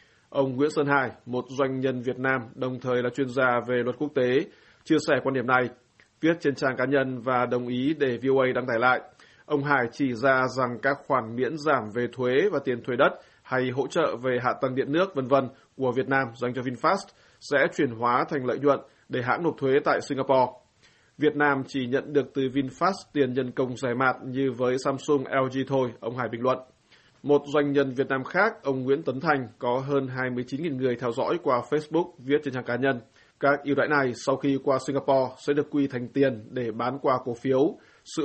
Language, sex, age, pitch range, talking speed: Vietnamese, male, 20-39, 125-140 Hz, 220 wpm